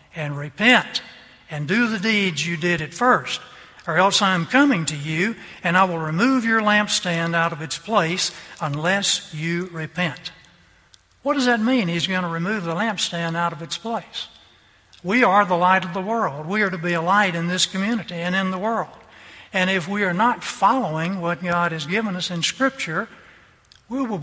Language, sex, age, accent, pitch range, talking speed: English, male, 60-79, American, 165-205 Hz, 195 wpm